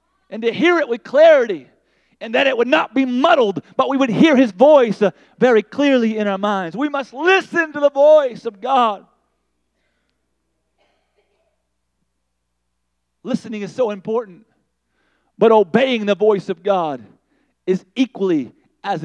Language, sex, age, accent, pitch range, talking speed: English, male, 40-59, American, 190-275 Hz, 145 wpm